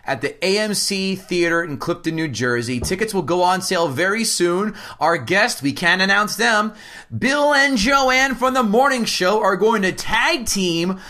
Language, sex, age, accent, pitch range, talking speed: English, male, 30-49, American, 170-225 Hz, 180 wpm